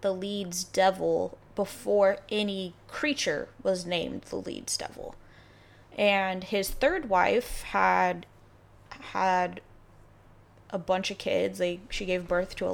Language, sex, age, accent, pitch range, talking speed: English, female, 20-39, American, 170-205 Hz, 125 wpm